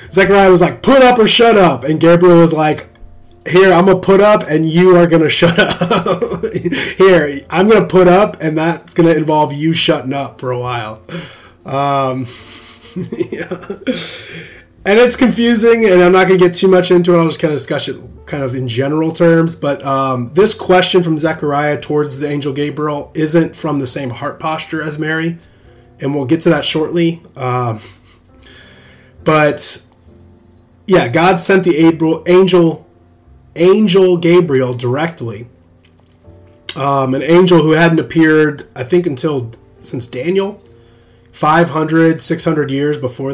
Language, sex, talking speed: English, male, 160 wpm